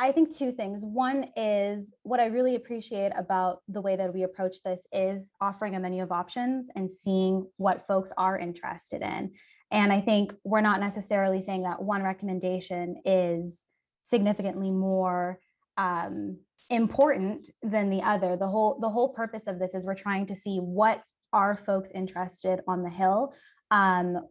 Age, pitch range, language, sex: 20-39, 185-225 Hz, English, female